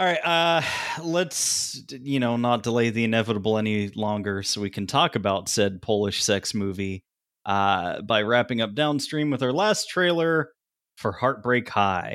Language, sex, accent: English, male, American